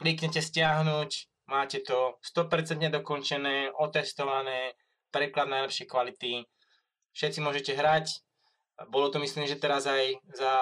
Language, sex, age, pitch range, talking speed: Slovak, male, 20-39, 130-150 Hz, 120 wpm